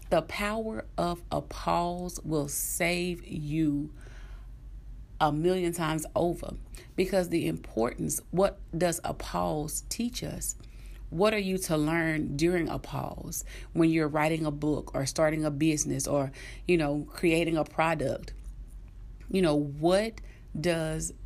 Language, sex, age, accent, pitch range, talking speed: English, female, 40-59, American, 145-190 Hz, 135 wpm